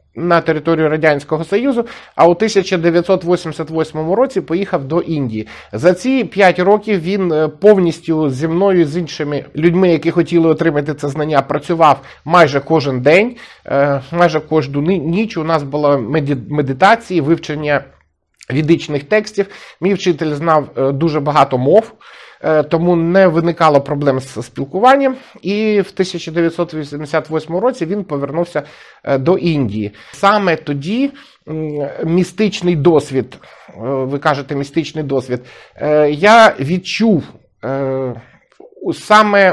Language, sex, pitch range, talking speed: Ukrainian, male, 145-190 Hz, 110 wpm